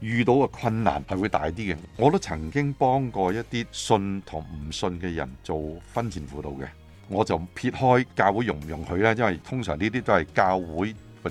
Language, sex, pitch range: Chinese, male, 85-115 Hz